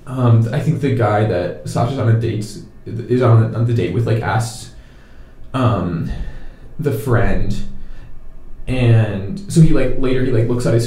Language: English